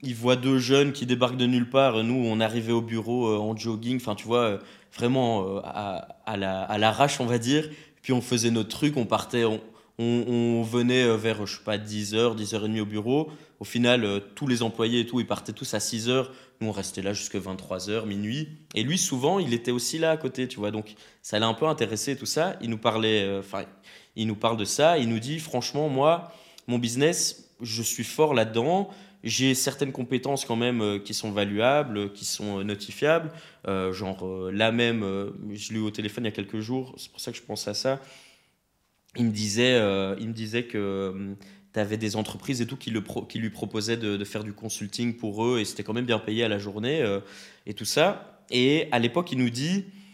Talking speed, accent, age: 220 wpm, French, 20-39